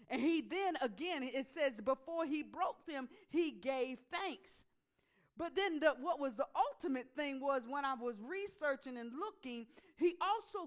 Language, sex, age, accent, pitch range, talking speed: English, female, 50-69, American, 245-315 Hz, 165 wpm